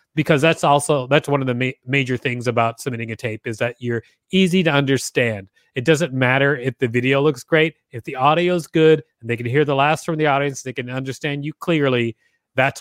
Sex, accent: male, American